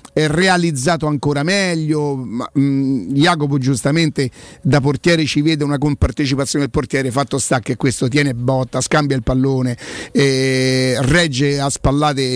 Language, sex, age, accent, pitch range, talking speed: Italian, male, 50-69, native, 135-170 Hz, 140 wpm